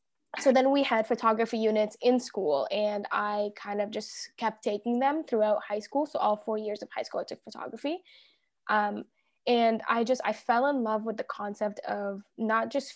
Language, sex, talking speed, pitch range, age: English, female, 200 wpm, 210-250 Hz, 10-29